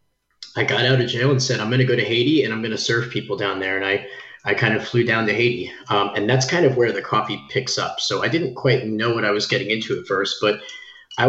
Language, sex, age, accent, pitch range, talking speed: English, male, 30-49, American, 105-130 Hz, 285 wpm